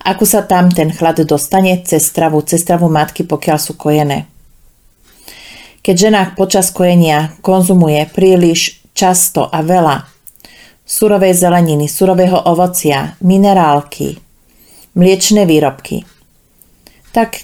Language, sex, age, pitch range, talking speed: Slovak, female, 40-59, 160-190 Hz, 100 wpm